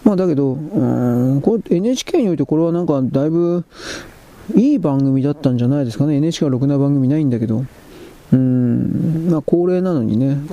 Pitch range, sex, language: 130-160 Hz, male, Japanese